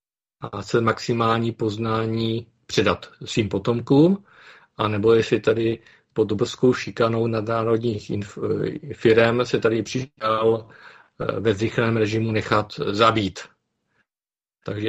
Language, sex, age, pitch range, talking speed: Czech, male, 50-69, 110-130 Hz, 100 wpm